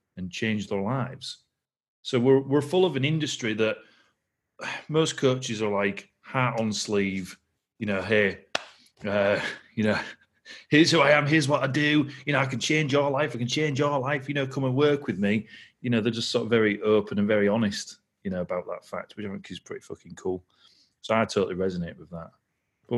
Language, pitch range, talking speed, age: English, 95-125 Hz, 215 wpm, 30-49